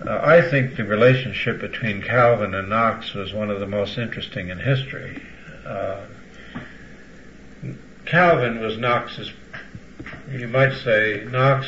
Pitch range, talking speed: 110-130 Hz, 130 wpm